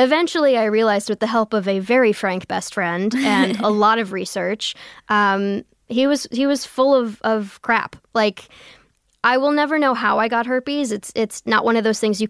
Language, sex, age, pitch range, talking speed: English, female, 10-29, 195-245 Hz, 210 wpm